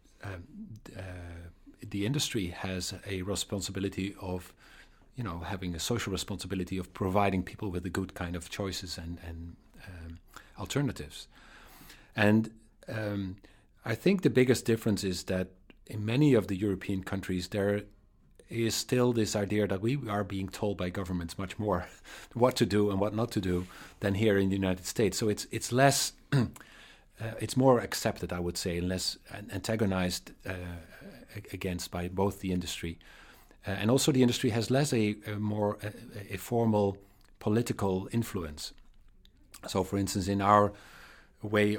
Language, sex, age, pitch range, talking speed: English, male, 40-59, 90-110 Hz, 160 wpm